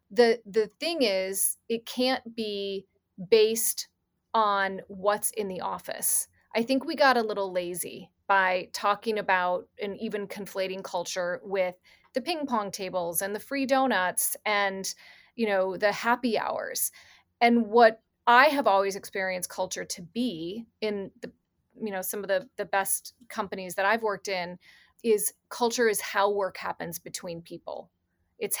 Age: 30-49